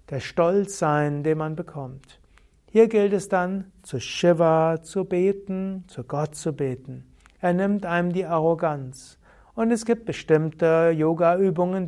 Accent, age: German, 60-79